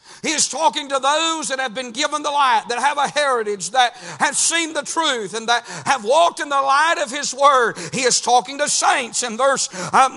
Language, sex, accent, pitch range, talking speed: English, male, American, 255-295 Hz, 225 wpm